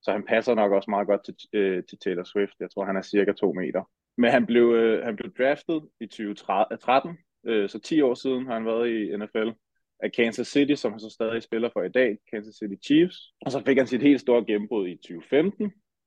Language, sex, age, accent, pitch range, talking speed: Danish, male, 20-39, native, 105-125 Hz, 230 wpm